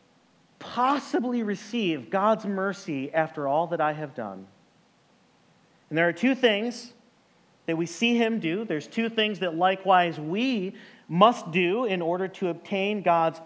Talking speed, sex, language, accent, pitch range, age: 145 wpm, male, English, American, 165-220 Hz, 30-49